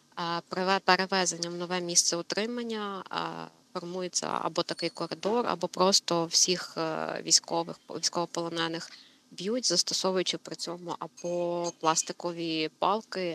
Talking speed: 95 wpm